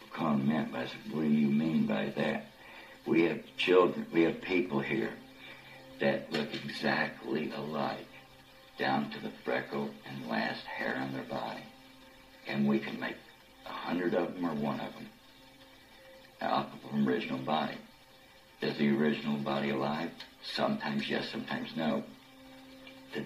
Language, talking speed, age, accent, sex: English, 150 wpm, 60-79, American, male